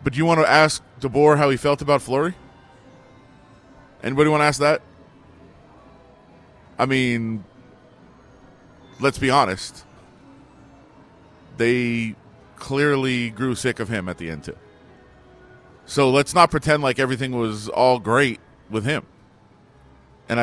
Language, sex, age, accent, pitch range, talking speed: English, male, 40-59, American, 120-150 Hz, 125 wpm